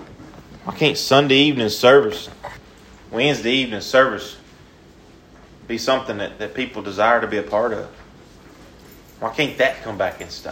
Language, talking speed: English, 150 wpm